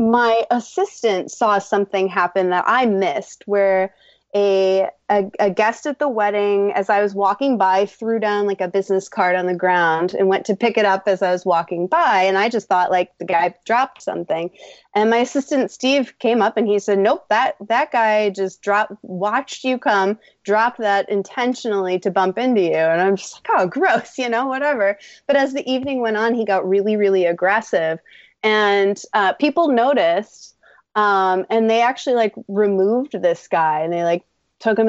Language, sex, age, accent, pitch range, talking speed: English, female, 20-39, American, 190-225 Hz, 195 wpm